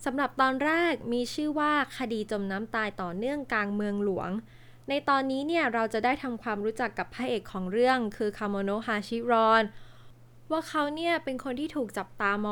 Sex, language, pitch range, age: female, Thai, 200-270 Hz, 20-39